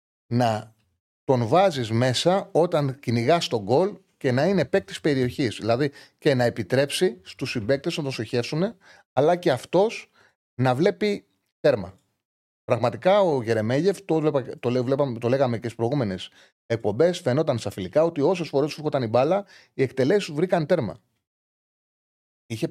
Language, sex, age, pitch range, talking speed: Greek, male, 30-49, 115-175 Hz, 140 wpm